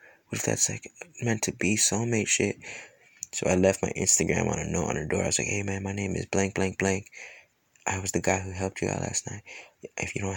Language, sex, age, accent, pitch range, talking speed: English, male, 20-39, American, 90-105 Hz, 255 wpm